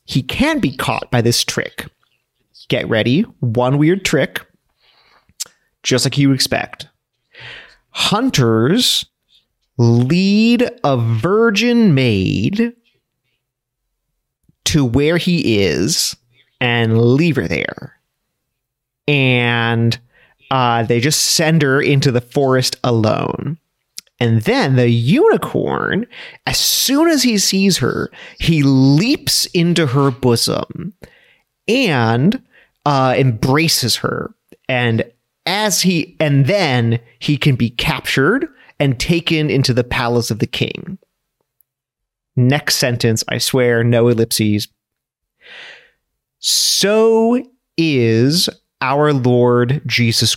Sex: male